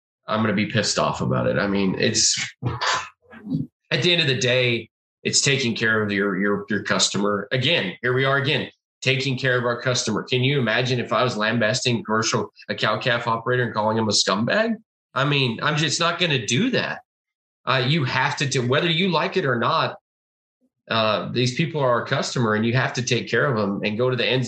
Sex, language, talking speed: male, English, 225 wpm